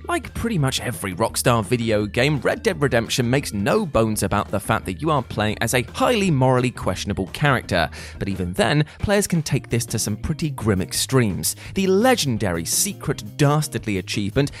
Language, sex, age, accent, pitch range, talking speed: English, male, 20-39, British, 105-145 Hz, 175 wpm